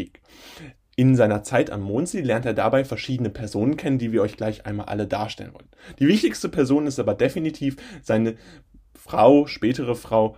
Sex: male